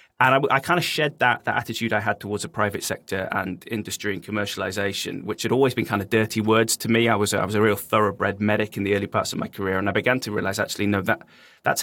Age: 20-39